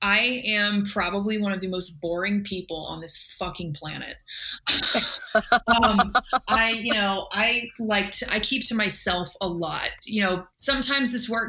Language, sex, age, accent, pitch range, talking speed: English, female, 20-39, American, 185-225 Hz, 160 wpm